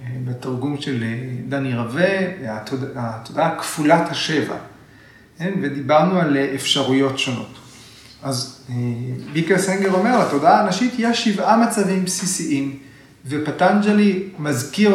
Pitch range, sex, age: 135-190 Hz, male, 30-49